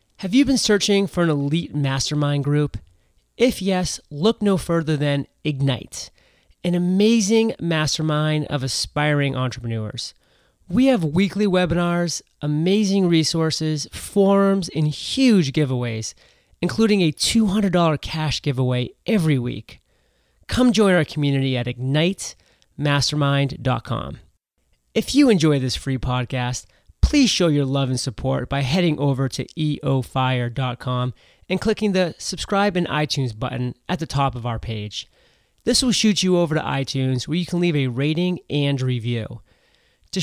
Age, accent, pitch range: 30-49, American, 130-175 Hz